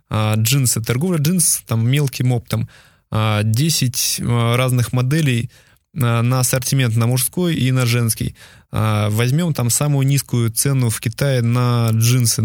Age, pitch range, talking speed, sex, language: 20-39, 120-135 Hz, 115 wpm, male, Russian